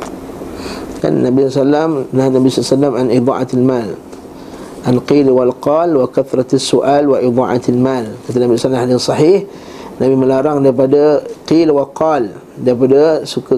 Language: Malay